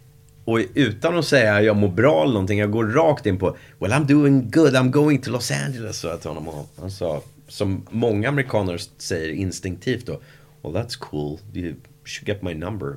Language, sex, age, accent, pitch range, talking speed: English, male, 30-49, Swedish, 85-125 Hz, 200 wpm